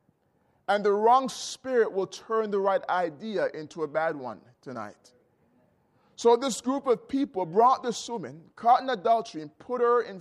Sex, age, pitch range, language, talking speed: male, 30-49, 200-250 Hz, English, 170 wpm